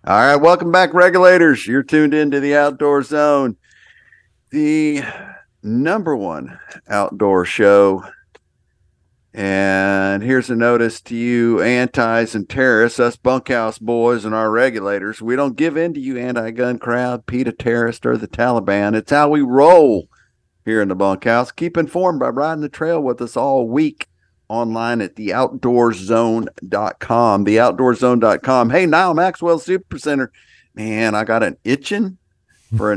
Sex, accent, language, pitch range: male, American, English, 115-160 Hz